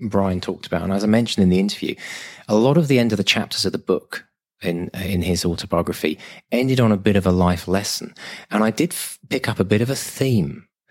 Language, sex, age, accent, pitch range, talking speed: English, male, 30-49, British, 85-110 Hz, 235 wpm